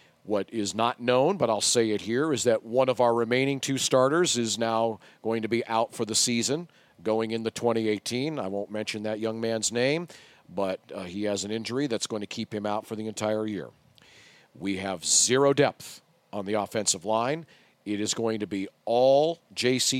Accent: American